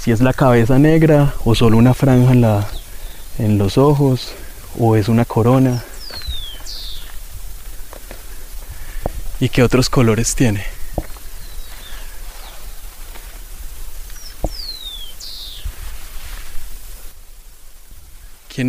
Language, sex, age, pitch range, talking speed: Spanish, male, 20-39, 85-125 Hz, 75 wpm